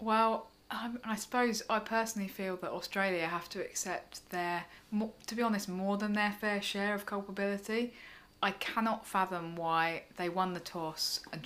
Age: 30-49